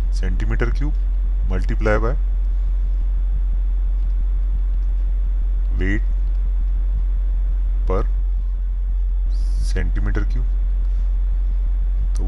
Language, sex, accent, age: Hindi, male, native, 20-39